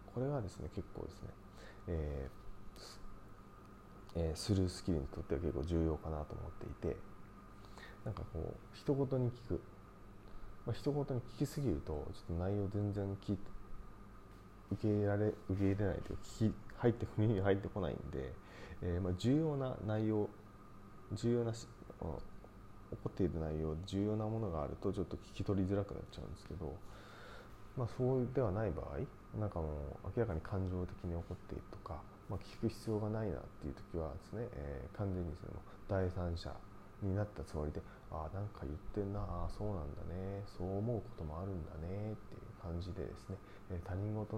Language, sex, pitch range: Japanese, male, 85-105 Hz